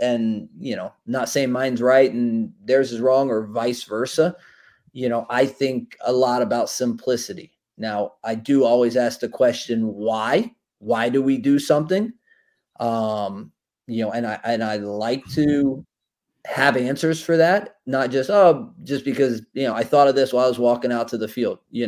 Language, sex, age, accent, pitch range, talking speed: English, male, 30-49, American, 120-145 Hz, 185 wpm